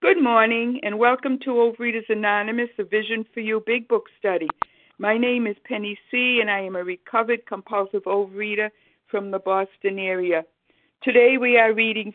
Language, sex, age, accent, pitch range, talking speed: English, female, 60-79, American, 190-235 Hz, 170 wpm